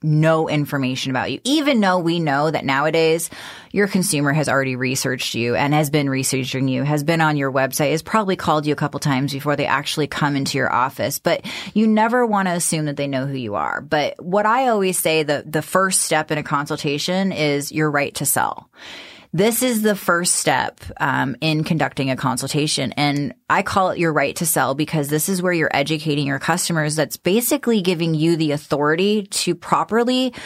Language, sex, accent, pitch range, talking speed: English, female, American, 150-200 Hz, 205 wpm